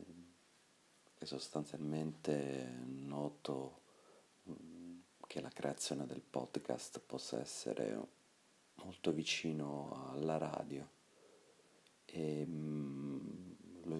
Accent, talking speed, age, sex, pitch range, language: native, 65 wpm, 40-59, male, 70-80 Hz, Italian